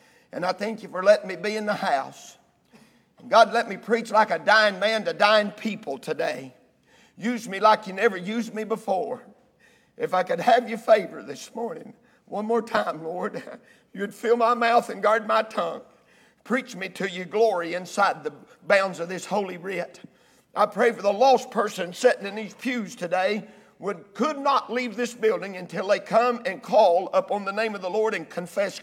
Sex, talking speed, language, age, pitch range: male, 195 wpm, English, 50-69, 195-240 Hz